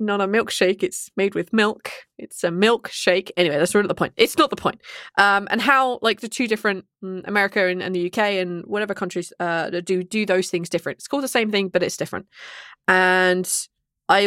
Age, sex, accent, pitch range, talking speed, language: 20-39, female, British, 185-245 Hz, 210 wpm, English